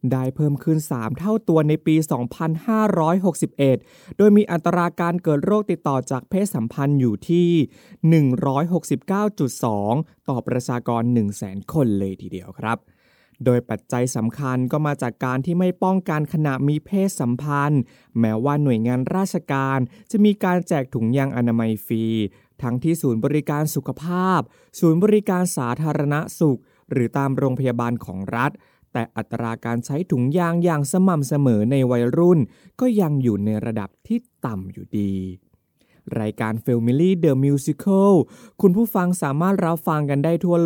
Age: 20-39